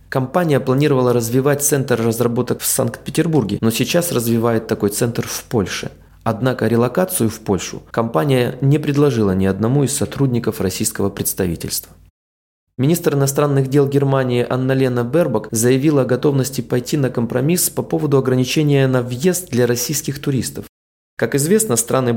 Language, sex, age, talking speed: Russian, male, 20-39, 135 wpm